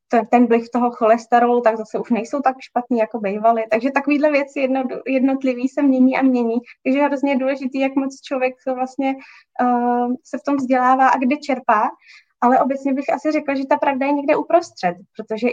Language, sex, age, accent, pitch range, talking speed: Czech, female, 20-39, native, 215-255 Hz, 195 wpm